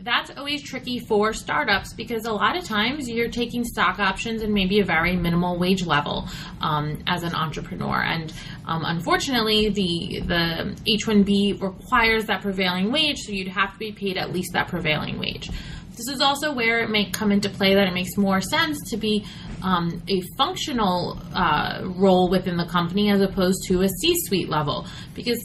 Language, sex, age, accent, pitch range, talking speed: English, female, 20-39, American, 180-235 Hz, 180 wpm